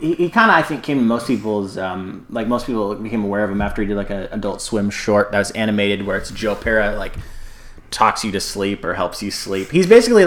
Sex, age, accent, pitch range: male, 20-39, American, 105-125 Hz